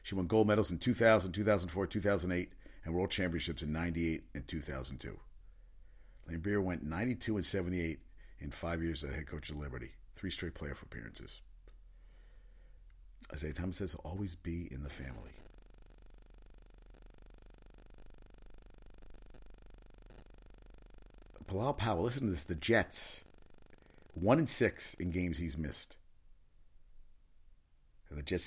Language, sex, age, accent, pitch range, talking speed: English, male, 50-69, American, 80-105 Hz, 115 wpm